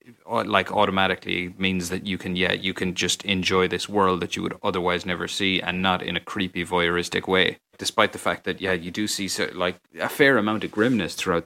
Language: English